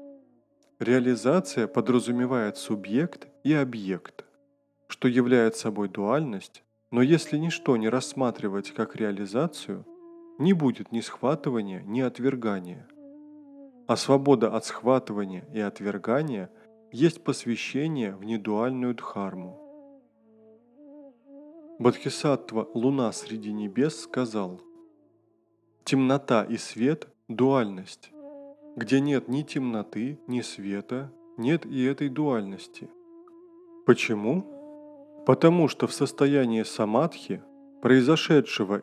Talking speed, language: 90 wpm, Russian